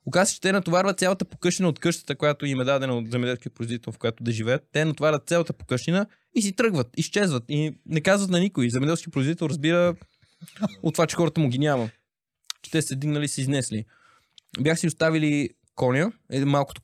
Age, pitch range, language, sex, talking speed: 20-39, 120-165 Hz, Bulgarian, male, 200 wpm